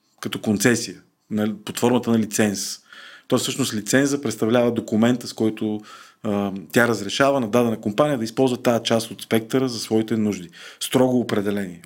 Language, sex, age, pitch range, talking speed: Bulgarian, male, 40-59, 105-130 Hz, 150 wpm